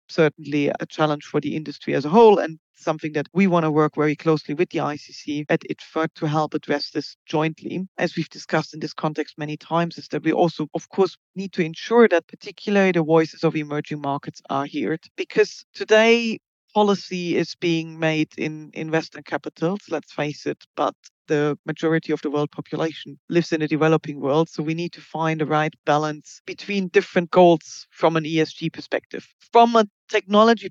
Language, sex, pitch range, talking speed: English, female, 150-175 Hz, 190 wpm